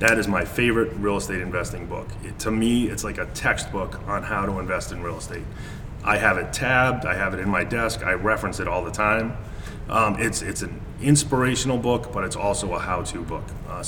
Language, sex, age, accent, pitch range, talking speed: English, male, 30-49, American, 95-115 Hz, 220 wpm